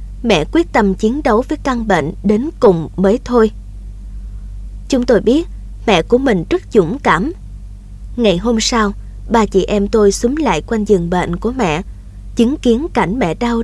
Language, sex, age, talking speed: Vietnamese, female, 20-39, 175 wpm